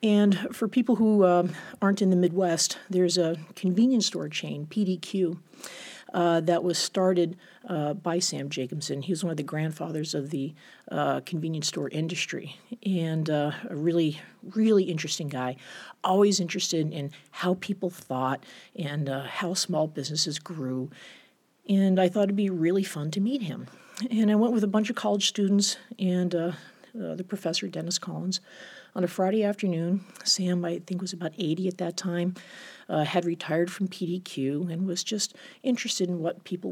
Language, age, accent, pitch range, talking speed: English, 50-69, American, 160-200 Hz, 170 wpm